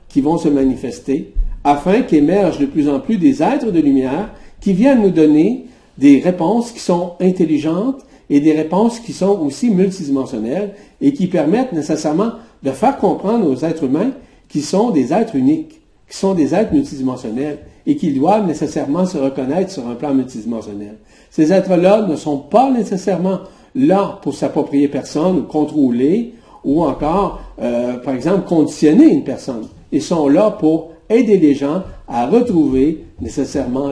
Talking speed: 160 wpm